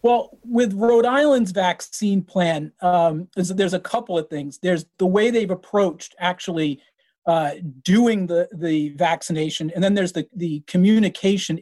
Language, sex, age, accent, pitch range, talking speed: English, male, 30-49, American, 160-195 Hz, 155 wpm